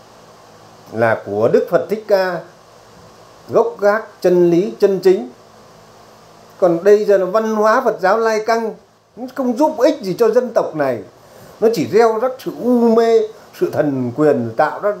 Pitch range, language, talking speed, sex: 135-220 Hz, Vietnamese, 170 wpm, male